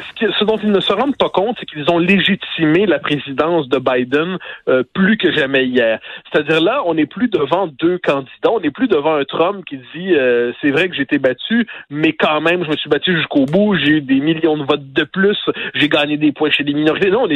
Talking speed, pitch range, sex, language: 250 wpm, 150-205 Hz, male, French